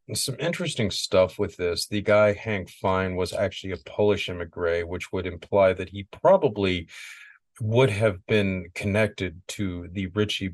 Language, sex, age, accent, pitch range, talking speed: English, male, 40-59, American, 90-105 Hz, 155 wpm